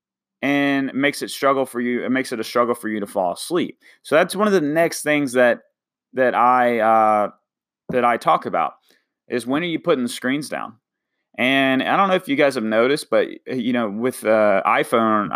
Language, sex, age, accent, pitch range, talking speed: English, male, 30-49, American, 100-125 Hz, 210 wpm